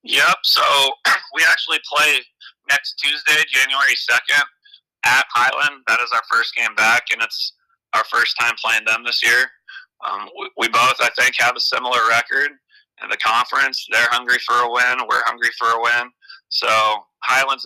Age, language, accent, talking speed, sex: 30-49, English, American, 175 wpm, male